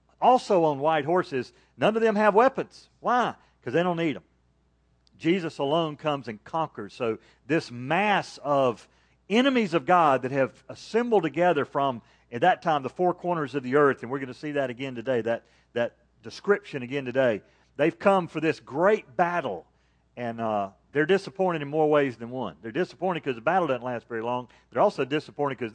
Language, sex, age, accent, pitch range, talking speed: English, male, 50-69, American, 115-175 Hz, 190 wpm